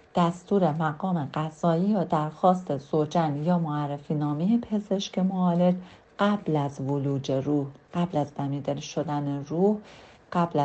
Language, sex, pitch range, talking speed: Persian, female, 155-195 Hz, 120 wpm